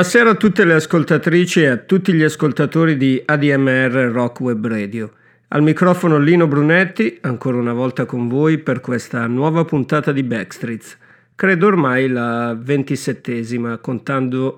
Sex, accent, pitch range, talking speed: male, native, 130-170 Hz, 145 wpm